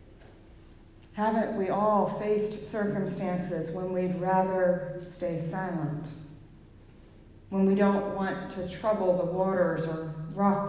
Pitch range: 170-225 Hz